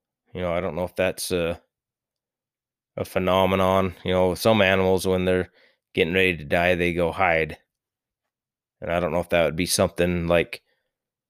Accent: American